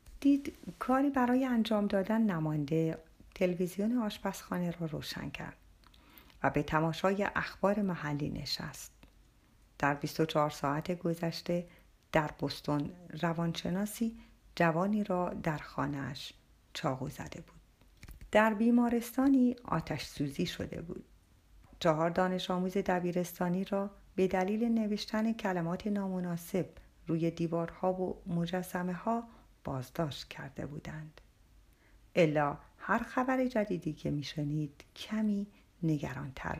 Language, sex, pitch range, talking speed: Persian, female, 160-235 Hz, 100 wpm